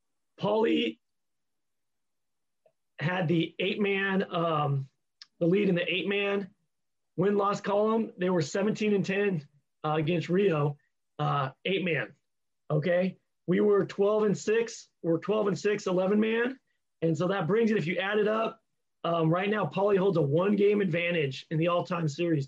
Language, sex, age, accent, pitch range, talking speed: English, male, 30-49, American, 155-200 Hz, 150 wpm